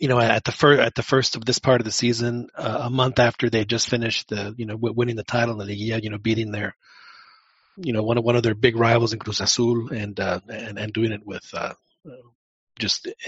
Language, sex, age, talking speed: English, male, 30-49, 260 wpm